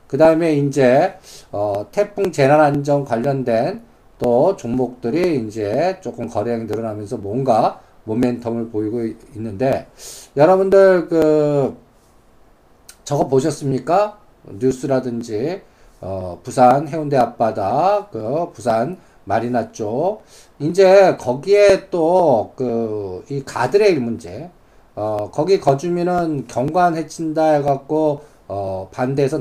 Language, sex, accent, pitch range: Korean, male, native, 115-150 Hz